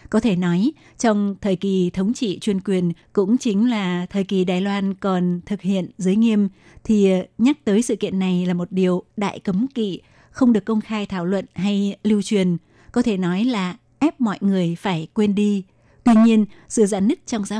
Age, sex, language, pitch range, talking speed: 20-39, female, Vietnamese, 185-220 Hz, 205 wpm